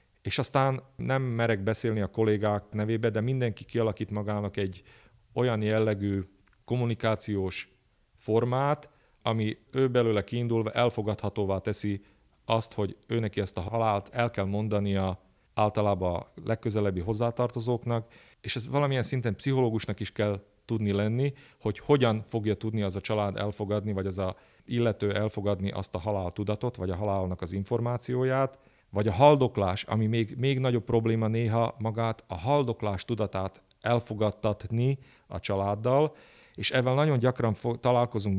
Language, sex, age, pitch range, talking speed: Hungarian, male, 40-59, 100-120 Hz, 140 wpm